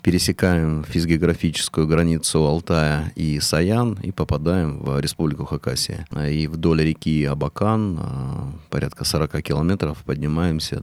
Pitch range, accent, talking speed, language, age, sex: 75-90 Hz, native, 105 wpm, Russian, 30-49, male